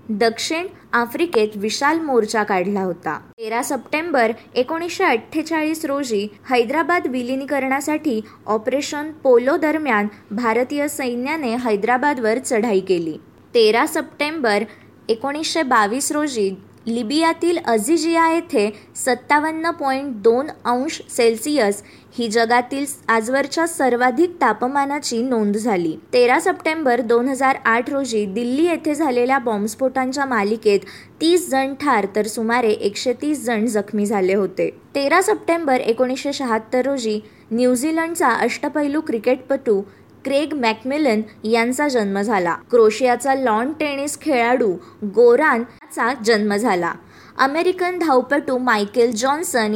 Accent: native